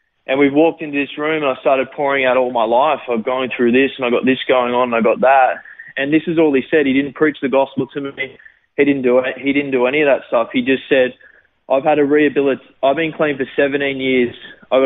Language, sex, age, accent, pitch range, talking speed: English, male, 20-39, Australian, 125-145 Hz, 265 wpm